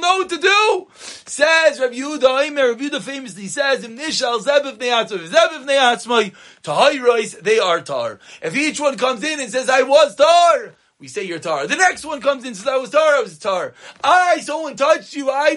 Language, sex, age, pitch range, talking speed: English, male, 30-49, 240-300 Hz, 190 wpm